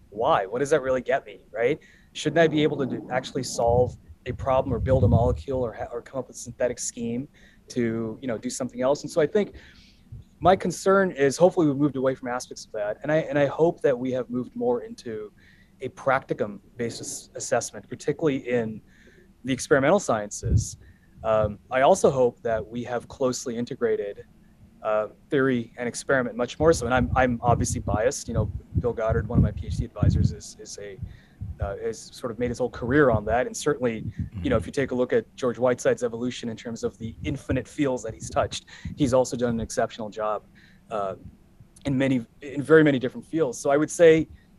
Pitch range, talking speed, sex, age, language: 115-150 Hz, 210 wpm, male, 20-39, English